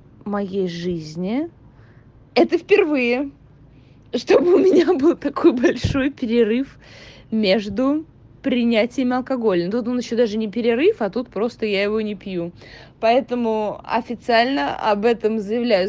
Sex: female